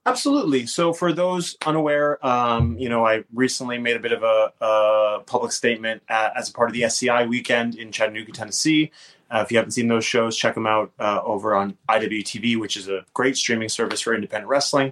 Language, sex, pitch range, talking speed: English, male, 110-135 Hz, 210 wpm